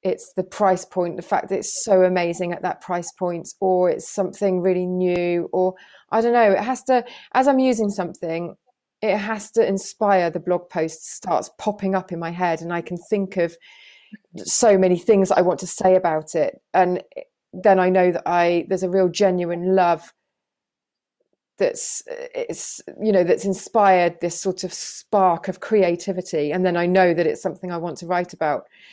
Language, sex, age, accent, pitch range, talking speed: English, female, 30-49, British, 175-210 Hz, 190 wpm